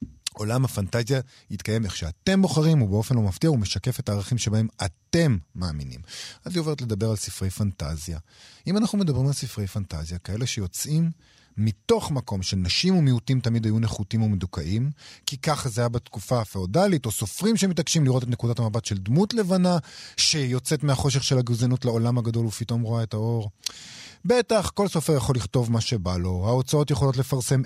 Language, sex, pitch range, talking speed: Hebrew, male, 105-145 Hz, 165 wpm